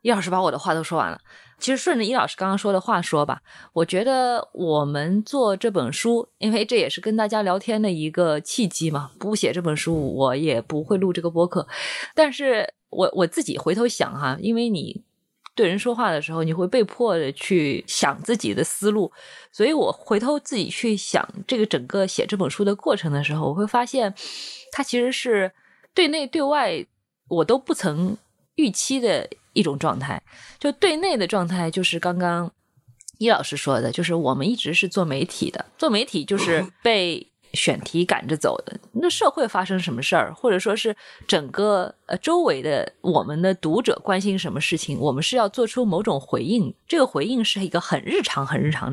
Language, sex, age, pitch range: Chinese, female, 20-39, 165-240 Hz